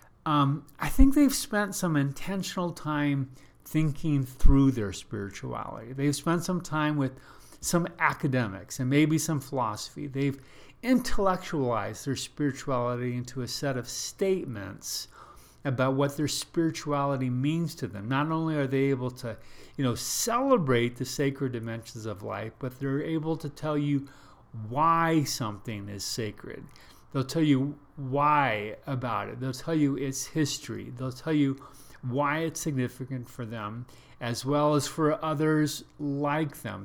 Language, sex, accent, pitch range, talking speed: English, male, American, 125-150 Hz, 145 wpm